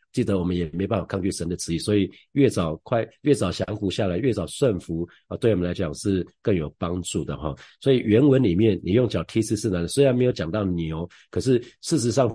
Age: 50-69